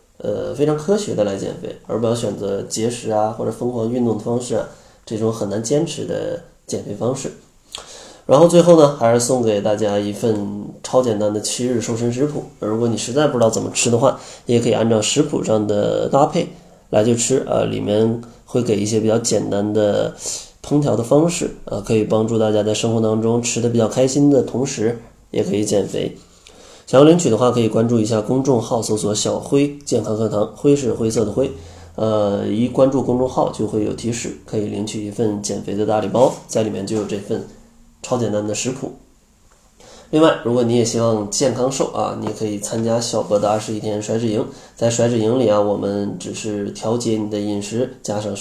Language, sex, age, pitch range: Chinese, male, 20-39, 105-125 Hz